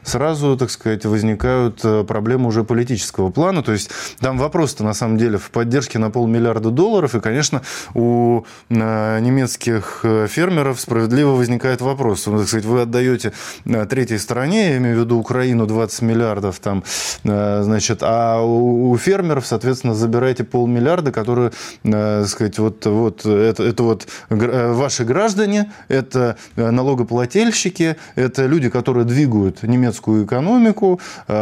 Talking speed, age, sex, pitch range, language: 125 wpm, 20-39, male, 110-130 Hz, Russian